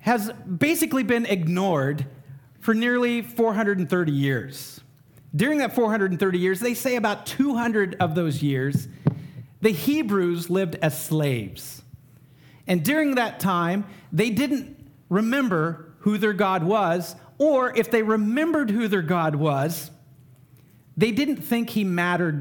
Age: 40-59